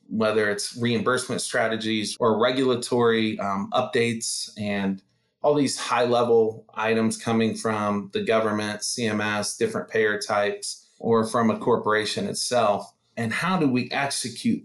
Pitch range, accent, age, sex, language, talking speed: 110-130 Hz, American, 20-39, male, English, 125 wpm